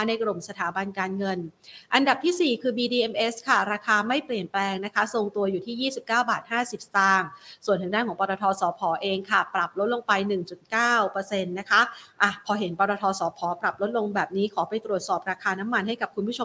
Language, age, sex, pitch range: Thai, 30-49, female, 195-240 Hz